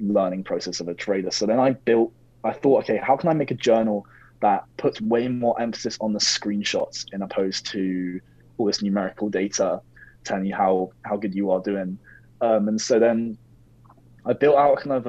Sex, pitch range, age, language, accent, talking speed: male, 100-120 Hz, 20-39, English, British, 200 wpm